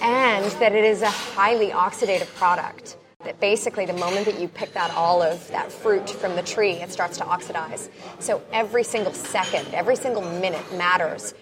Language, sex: English, female